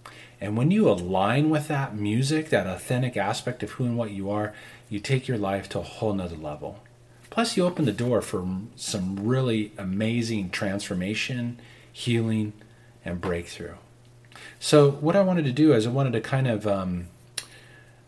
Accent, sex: American, male